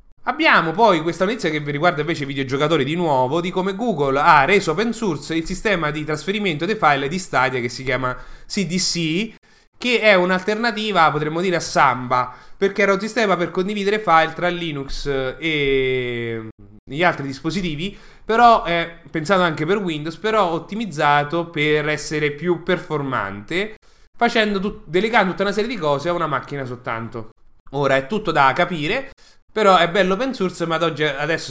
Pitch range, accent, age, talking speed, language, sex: 140-190 Hz, Italian, 20-39, 170 wpm, English, male